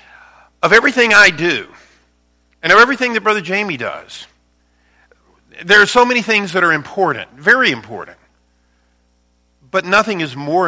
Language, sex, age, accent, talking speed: English, male, 50-69, American, 140 wpm